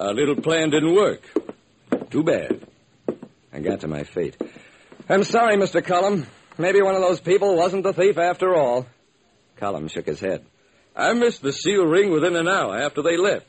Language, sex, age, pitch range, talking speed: English, male, 60-79, 120-200 Hz, 180 wpm